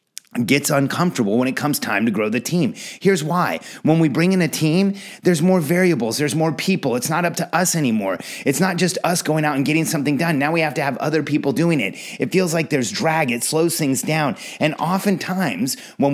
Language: English